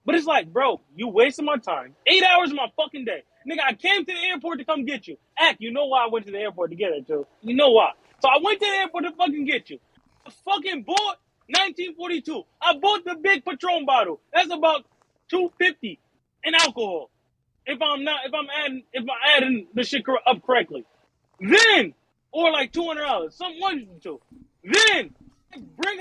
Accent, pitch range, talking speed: American, 265-365 Hz, 210 wpm